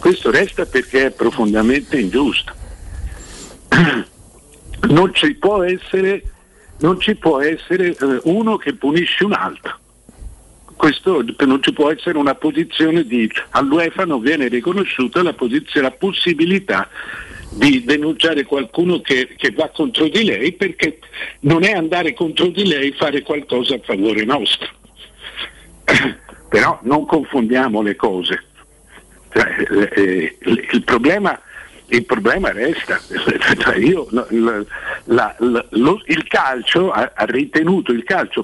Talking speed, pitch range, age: 120 wpm, 125-180 Hz, 60-79